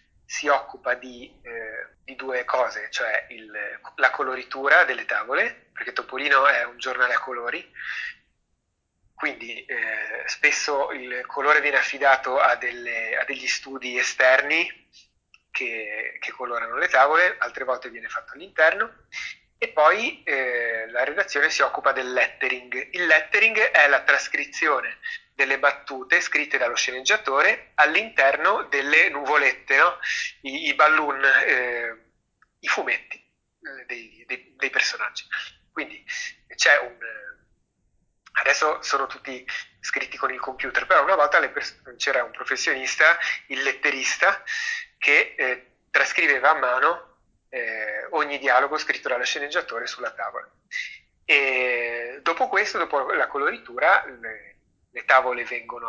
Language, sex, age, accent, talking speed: Italian, male, 30-49, native, 125 wpm